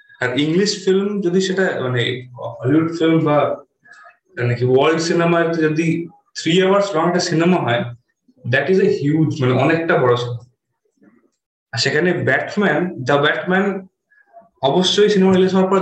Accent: native